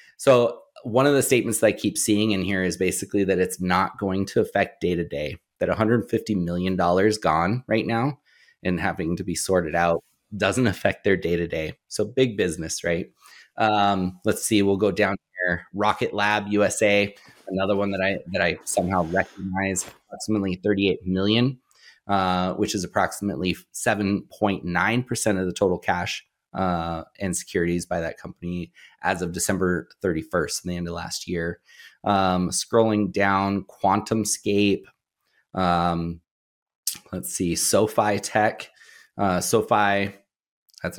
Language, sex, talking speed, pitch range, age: English, male, 145 wpm, 90-105 Hz, 30-49